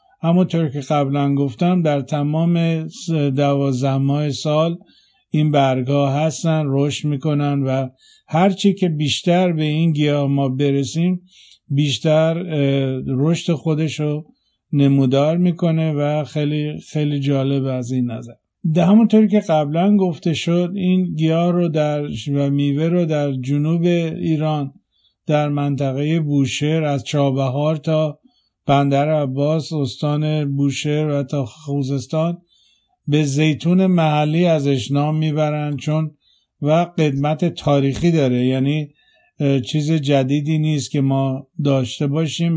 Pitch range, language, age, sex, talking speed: 140-165 Hz, Persian, 50-69, male, 115 wpm